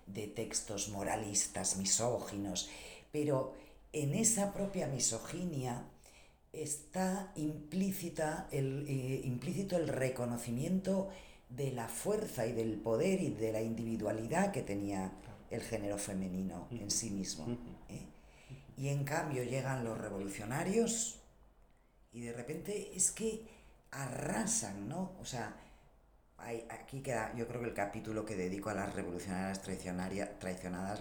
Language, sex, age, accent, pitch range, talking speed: Spanish, female, 40-59, Spanish, 100-135 Hz, 120 wpm